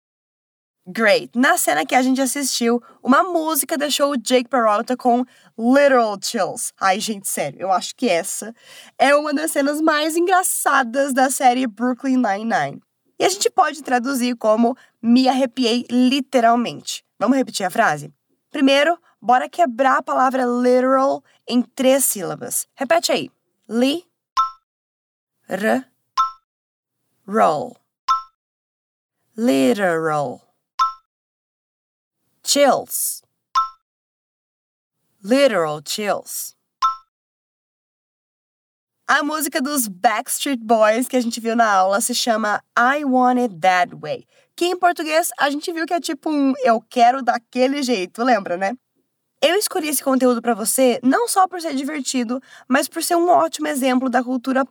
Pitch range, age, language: 240-290 Hz, 20-39, English